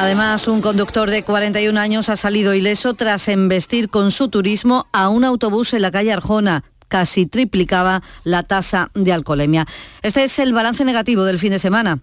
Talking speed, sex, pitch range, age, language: 180 wpm, female, 170-210 Hz, 40-59, Spanish